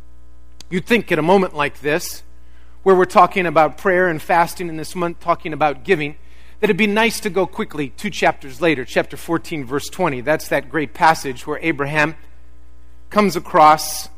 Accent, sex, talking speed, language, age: American, male, 180 wpm, English, 40-59